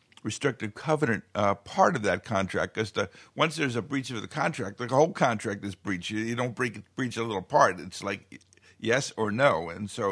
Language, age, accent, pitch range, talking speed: English, 50-69, American, 110-135 Hz, 210 wpm